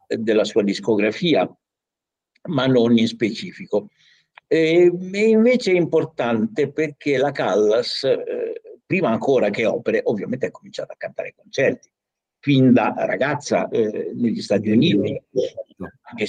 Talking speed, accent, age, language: 125 wpm, native, 60-79, Italian